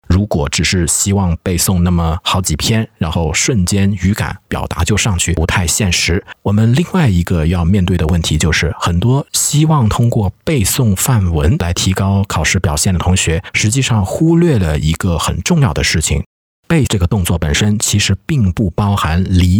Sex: male